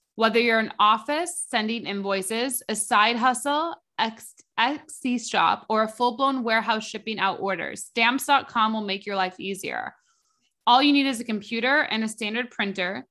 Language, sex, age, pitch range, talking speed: English, female, 20-39, 210-260 Hz, 160 wpm